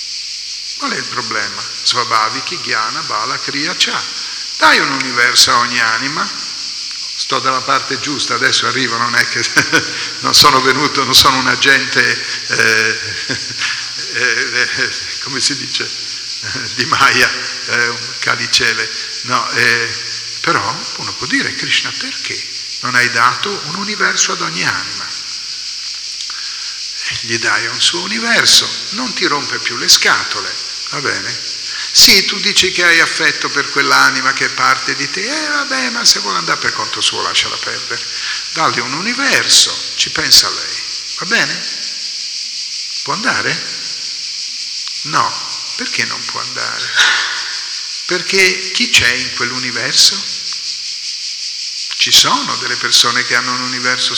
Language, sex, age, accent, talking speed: Italian, male, 50-69, native, 135 wpm